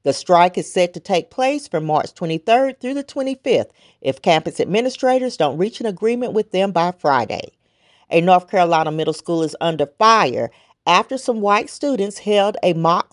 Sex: female